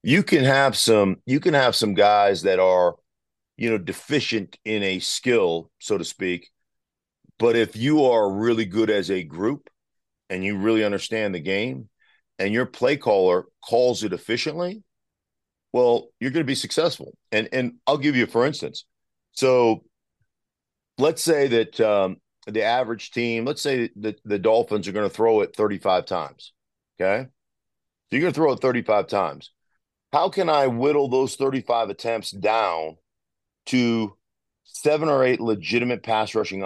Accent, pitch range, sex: American, 105-130 Hz, male